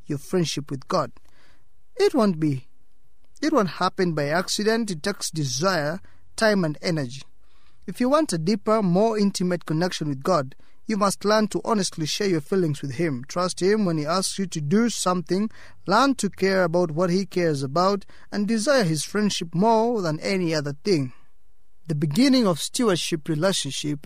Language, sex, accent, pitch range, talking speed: English, male, South African, 145-200 Hz, 170 wpm